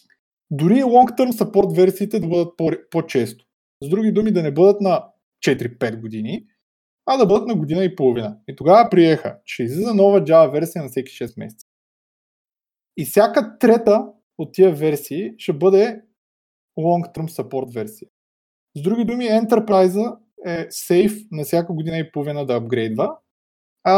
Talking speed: 155 wpm